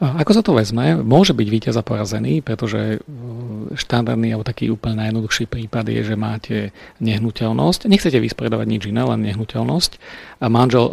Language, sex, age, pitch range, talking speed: Slovak, male, 40-59, 110-125 Hz, 155 wpm